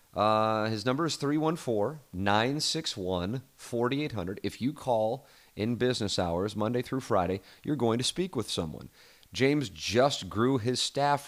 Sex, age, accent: male, 30-49, American